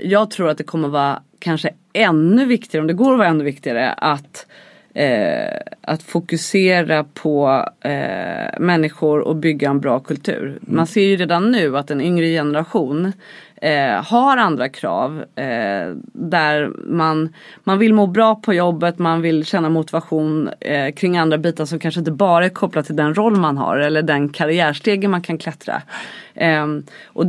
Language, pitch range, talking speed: English, 155-205 Hz, 160 wpm